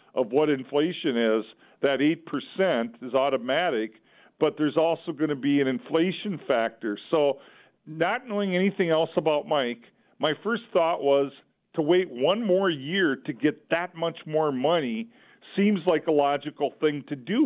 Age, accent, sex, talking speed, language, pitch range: 50-69, American, male, 160 wpm, English, 140-180 Hz